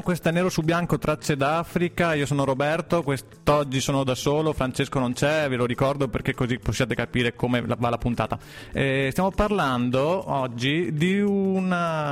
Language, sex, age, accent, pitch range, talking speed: Italian, male, 30-49, native, 120-155 Hz, 165 wpm